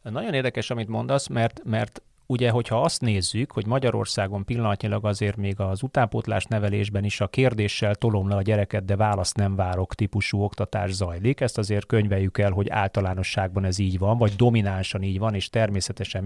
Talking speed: 175 wpm